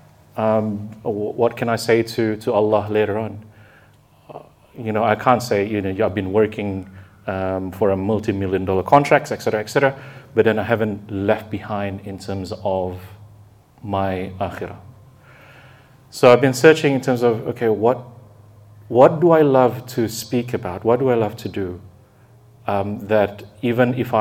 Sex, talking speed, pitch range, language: male, 165 wpm, 100-120 Hz, English